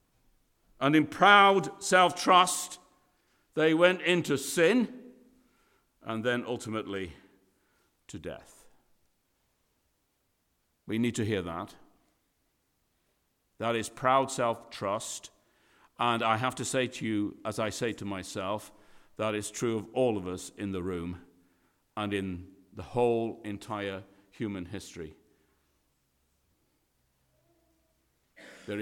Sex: male